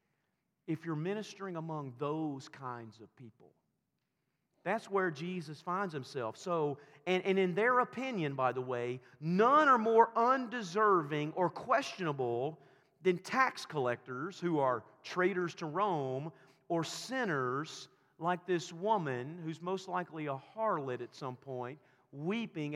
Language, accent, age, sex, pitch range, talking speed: English, American, 40-59, male, 135-185 Hz, 130 wpm